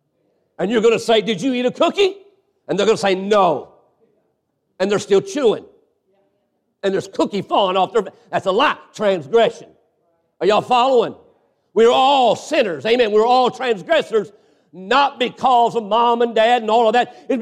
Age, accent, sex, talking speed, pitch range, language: 50-69, American, male, 185 wpm, 220-265 Hz, English